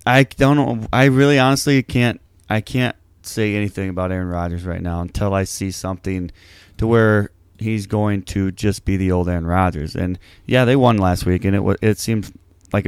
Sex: male